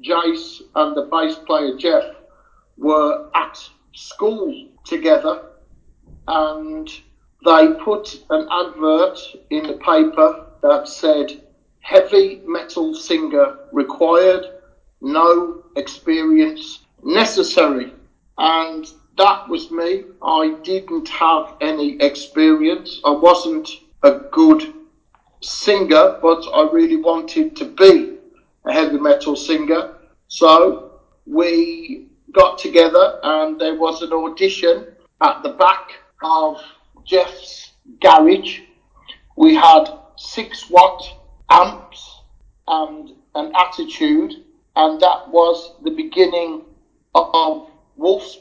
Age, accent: 50-69, British